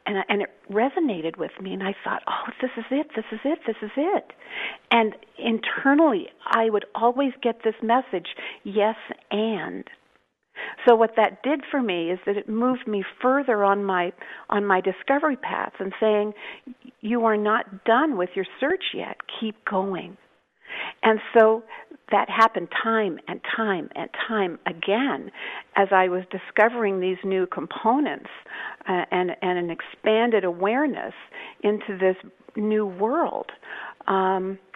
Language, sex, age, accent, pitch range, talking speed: English, female, 50-69, American, 190-240 Hz, 150 wpm